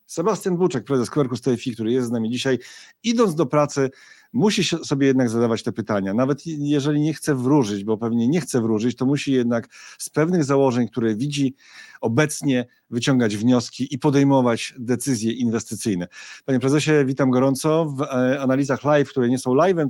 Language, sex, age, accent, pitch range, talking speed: Polish, male, 40-59, native, 120-145 Hz, 165 wpm